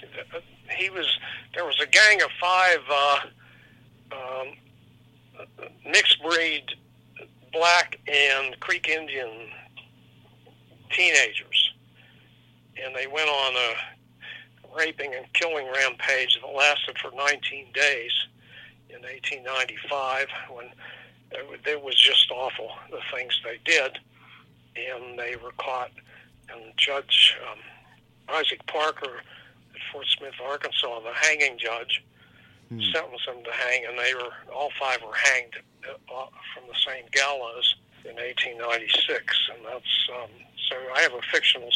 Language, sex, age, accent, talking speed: English, male, 60-79, American, 120 wpm